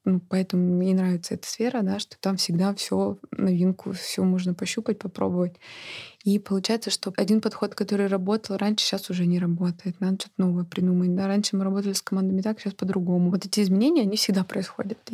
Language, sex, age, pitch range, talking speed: Russian, female, 20-39, 185-215 Hz, 185 wpm